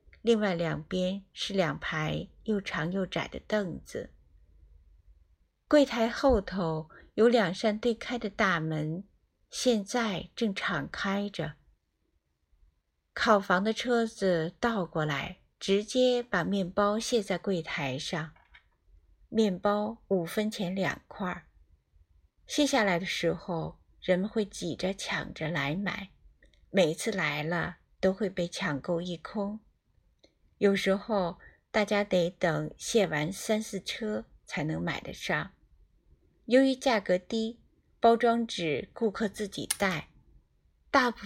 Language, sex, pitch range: Chinese, female, 160-215 Hz